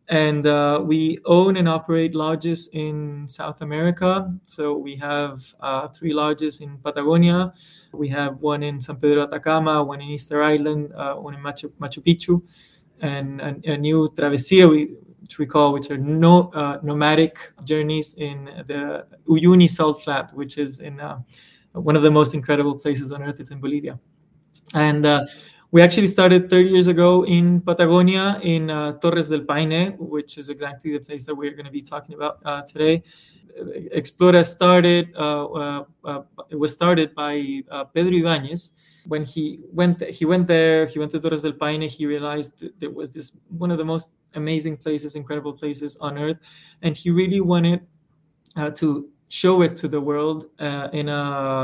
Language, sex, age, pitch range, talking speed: English, male, 20-39, 145-165 Hz, 180 wpm